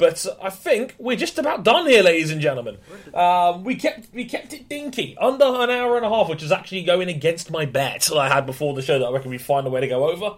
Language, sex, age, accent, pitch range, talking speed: English, male, 20-39, British, 150-195 Hz, 280 wpm